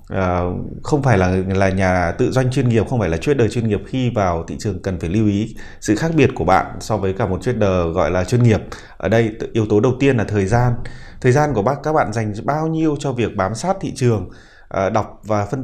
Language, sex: Vietnamese, male